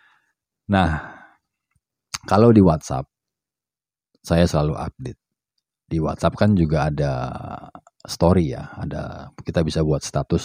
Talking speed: 110 wpm